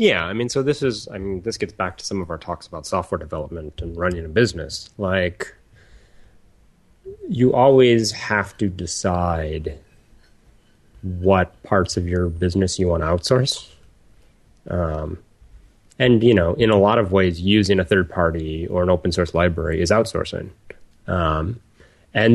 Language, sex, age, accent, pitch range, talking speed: English, male, 30-49, American, 85-105 Hz, 160 wpm